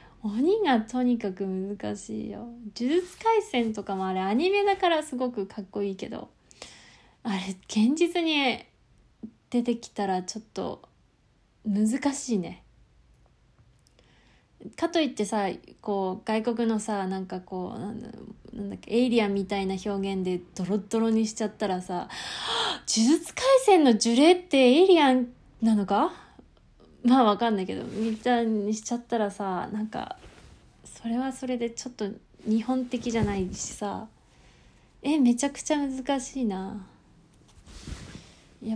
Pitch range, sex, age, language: 200-255 Hz, female, 20-39, Japanese